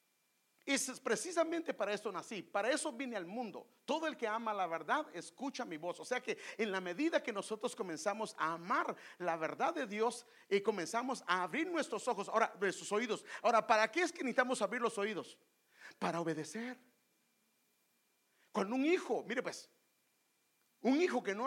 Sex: male